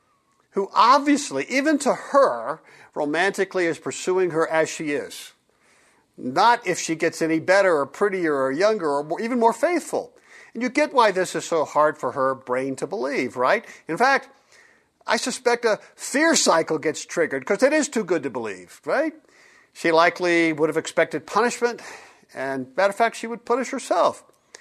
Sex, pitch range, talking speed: male, 165-255 Hz, 175 wpm